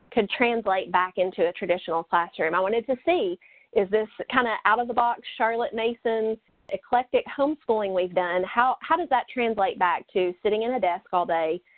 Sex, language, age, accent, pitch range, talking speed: female, English, 30-49, American, 195-245 Hz, 190 wpm